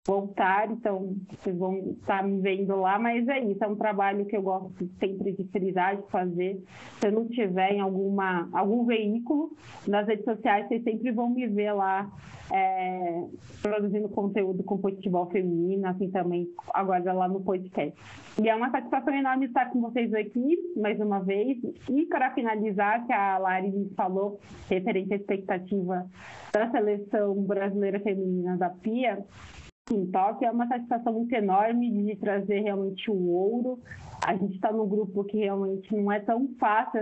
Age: 30-49